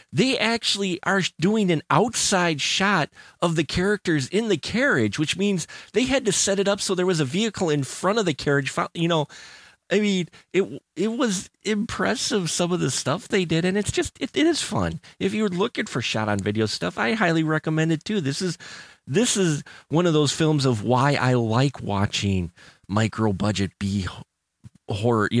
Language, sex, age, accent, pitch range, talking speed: English, male, 30-49, American, 120-185 Hz, 195 wpm